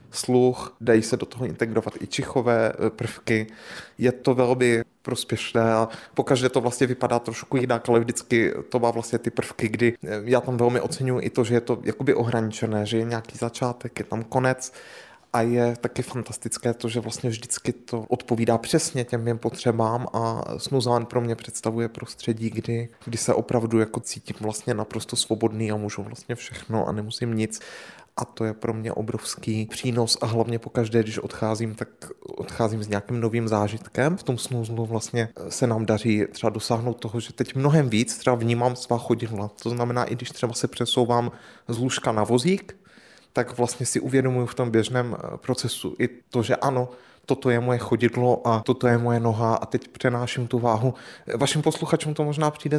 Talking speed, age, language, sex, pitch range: 175 wpm, 20-39, Czech, male, 115-125 Hz